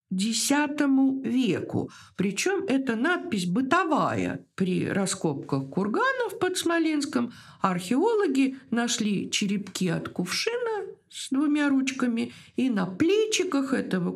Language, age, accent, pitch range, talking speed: Russian, 50-69, native, 195-315 Hz, 100 wpm